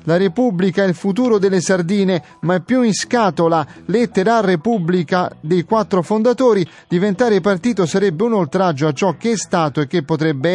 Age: 30-49